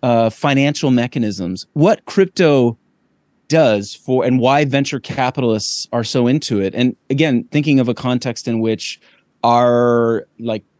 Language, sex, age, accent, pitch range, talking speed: English, male, 30-49, American, 115-145 Hz, 140 wpm